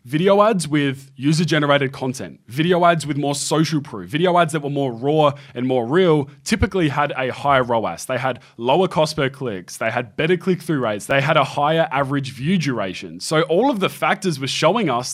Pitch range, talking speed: 135-160 Hz, 210 wpm